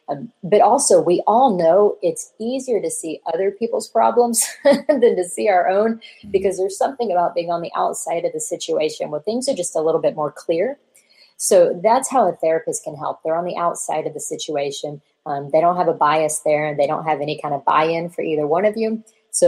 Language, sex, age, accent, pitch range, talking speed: English, female, 30-49, American, 160-205 Hz, 230 wpm